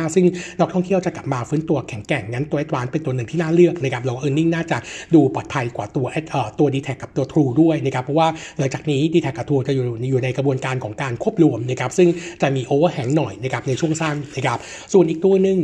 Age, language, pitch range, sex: 60-79, Thai, 140-175 Hz, male